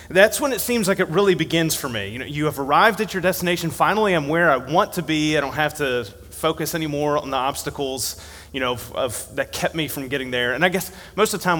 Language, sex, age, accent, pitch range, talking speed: English, male, 30-49, American, 125-170 Hz, 265 wpm